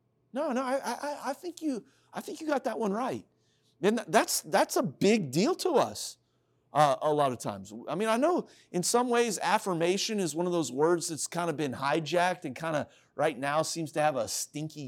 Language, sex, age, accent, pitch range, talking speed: English, male, 40-59, American, 150-230 Hz, 220 wpm